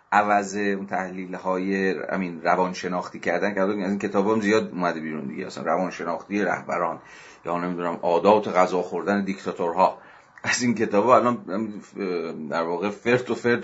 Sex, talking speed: male, 140 wpm